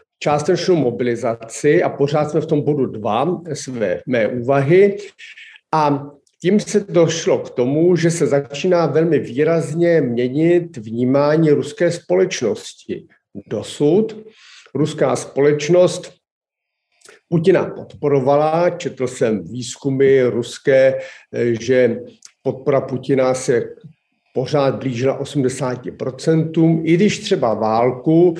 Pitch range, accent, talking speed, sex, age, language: 135-175 Hz, native, 95 wpm, male, 50-69, Czech